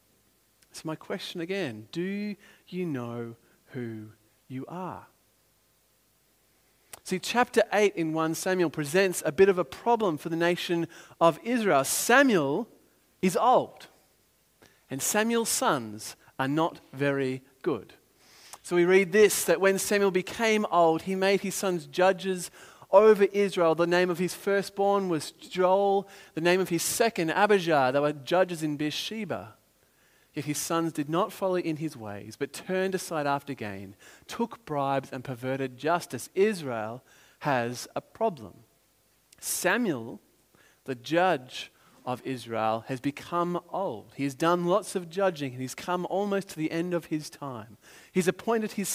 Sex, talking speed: male, 150 wpm